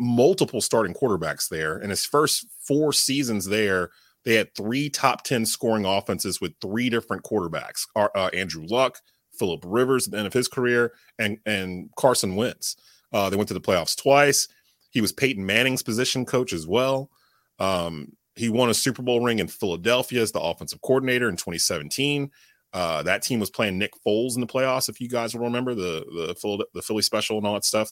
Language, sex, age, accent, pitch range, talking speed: English, male, 30-49, American, 95-125 Hz, 195 wpm